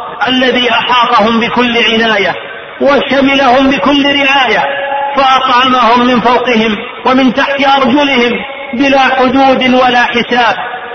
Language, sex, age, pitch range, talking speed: Arabic, male, 40-59, 250-275 Hz, 95 wpm